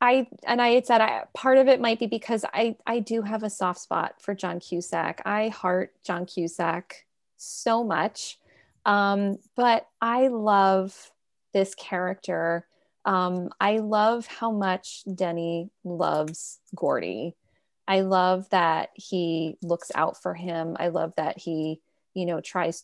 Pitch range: 175-215 Hz